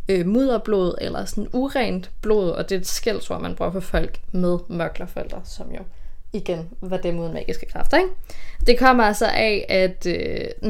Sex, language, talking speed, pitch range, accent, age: female, Danish, 180 wpm, 175-235 Hz, native, 20-39